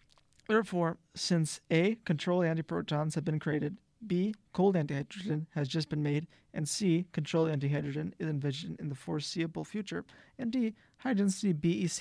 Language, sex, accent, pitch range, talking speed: English, male, American, 150-180 Hz, 145 wpm